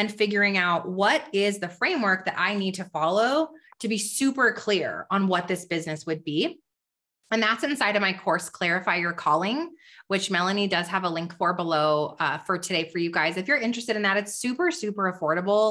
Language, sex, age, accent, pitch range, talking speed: English, female, 20-39, American, 180-220 Hz, 205 wpm